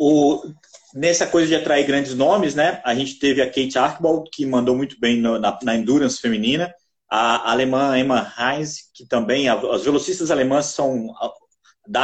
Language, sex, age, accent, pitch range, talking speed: Portuguese, male, 30-49, Brazilian, 130-195 Hz, 170 wpm